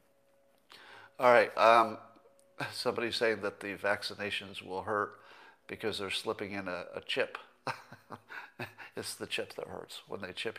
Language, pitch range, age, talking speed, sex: English, 105-140 Hz, 50-69, 140 wpm, male